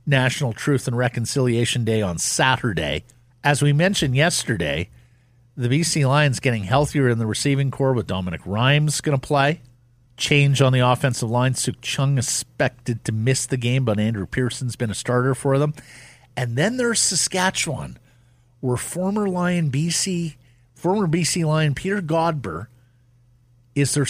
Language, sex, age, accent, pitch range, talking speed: English, male, 50-69, American, 125-160 Hz, 150 wpm